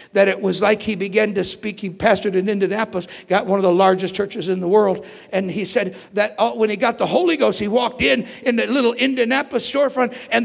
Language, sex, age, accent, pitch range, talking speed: English, male, 60-79, American, 175-230 Hz, 230 wpm